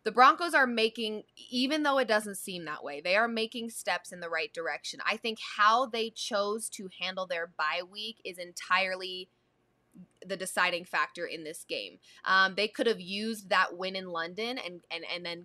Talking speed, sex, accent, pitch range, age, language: 195 wpm, female, American, 180-225 Hz, 20-39, English